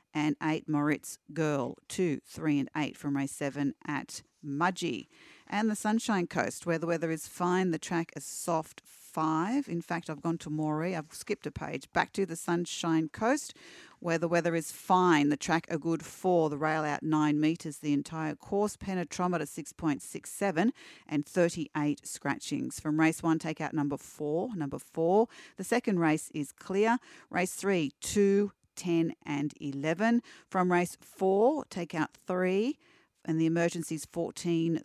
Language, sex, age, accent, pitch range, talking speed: English, female, 40-59, Australian, 155-195 Hz, 165 wpm